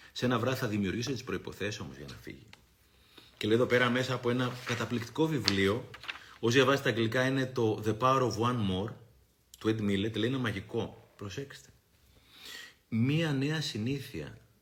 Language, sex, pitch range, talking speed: Greek, male, 95-125 Hz, 165 wpm